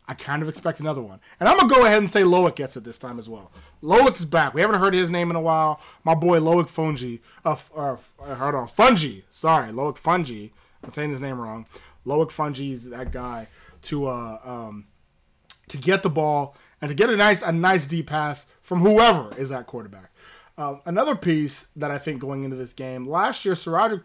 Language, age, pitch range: English, 20-39, 135-185 Hz